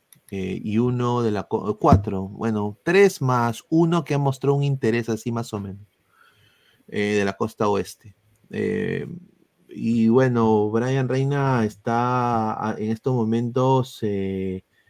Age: 30-49